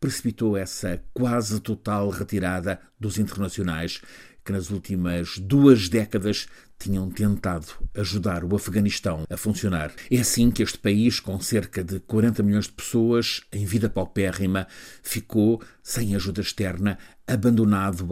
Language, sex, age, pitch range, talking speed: Portuguese, male, 50-69, 95-115 Hz, 130 wpm